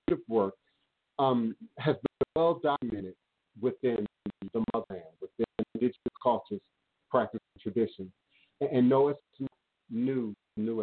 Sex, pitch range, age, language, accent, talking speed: male, 105-145 Hz, 50-69, English, American, 120 wpm